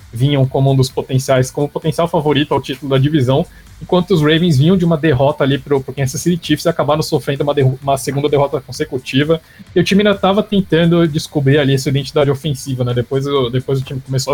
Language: English